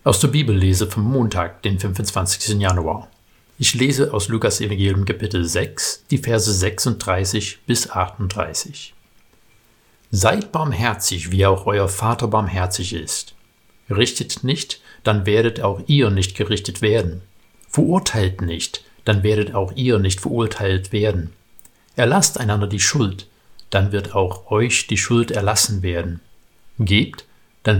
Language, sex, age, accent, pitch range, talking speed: German, male, 60-79, German, 95-115 Hz, 130 wpm